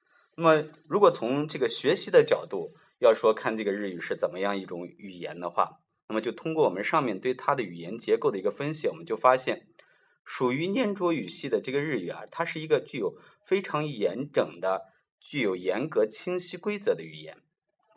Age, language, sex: 20-39, Chinese, male